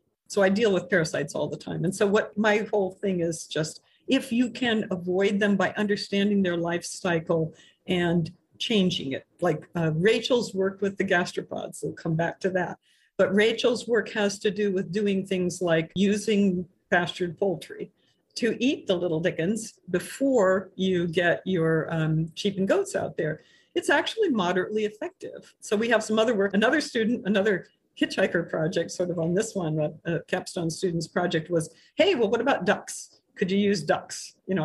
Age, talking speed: 50-69, 185 wpm